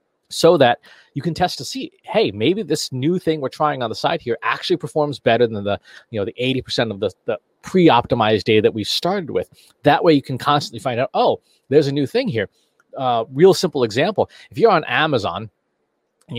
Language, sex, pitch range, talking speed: English, male, 120-160 Hz, 215 wpm